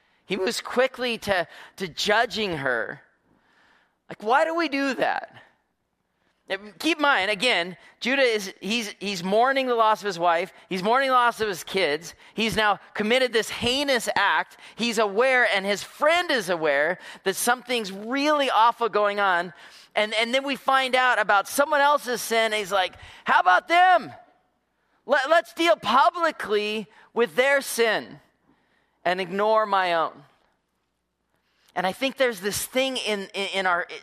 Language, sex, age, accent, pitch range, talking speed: English, male, 30-49, American, 175-245 Hz, 160 wpm